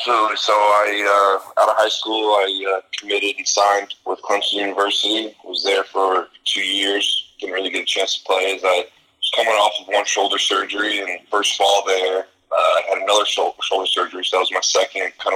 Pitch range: 95-100 Hz